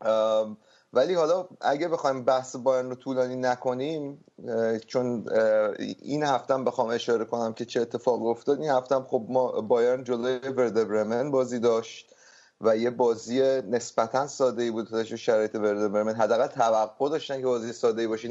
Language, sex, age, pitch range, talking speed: Persian, male, 30-49, 110-130 Hz, 155 wpm